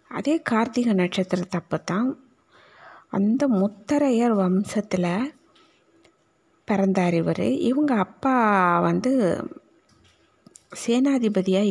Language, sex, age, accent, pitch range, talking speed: Tamil, female, 30-49, native, 190-265 Hz, 65 wpm